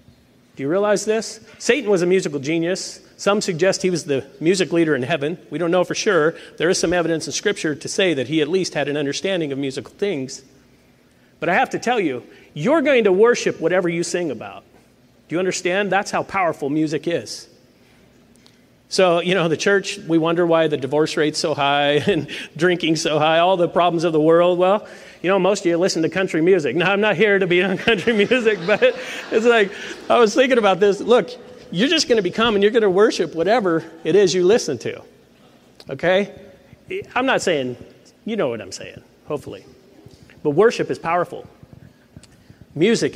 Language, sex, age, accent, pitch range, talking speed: English, male, 40-59, American, 155-205 Hz, 200 wpm